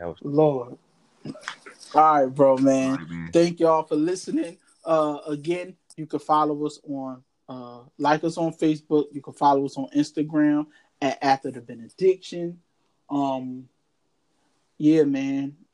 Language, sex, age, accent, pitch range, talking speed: English, male, 20-39, American, 140-160 Hz, 130 wpm